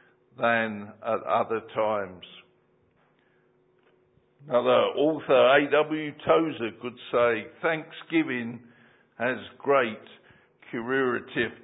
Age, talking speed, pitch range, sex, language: 50-69, 70 wpm, 115-140 Hz, male, English